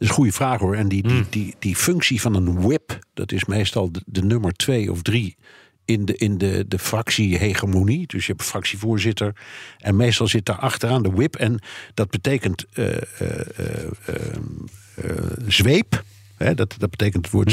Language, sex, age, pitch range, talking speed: Dutch, male, 50-69, 95-115 Hz, 200 wpm